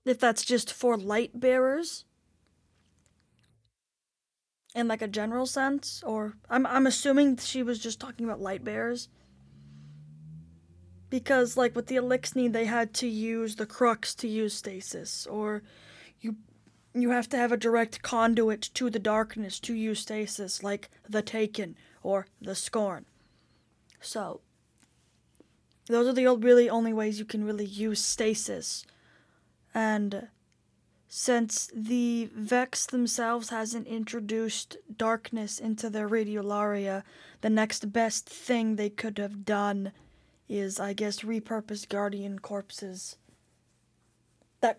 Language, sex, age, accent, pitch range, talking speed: English, female, 10-29, American, 200-235 Hz, 130 wpm